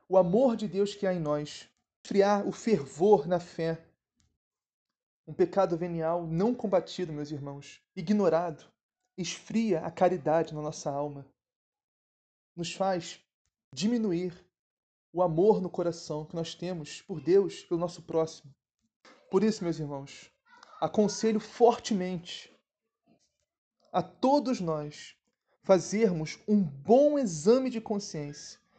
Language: Portuguese